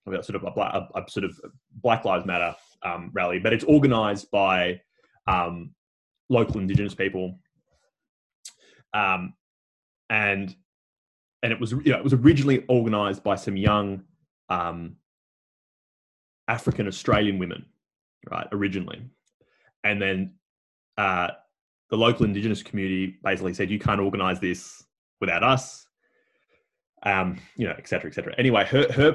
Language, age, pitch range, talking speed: English, 20-39, 95-120 Hz, 140 wpm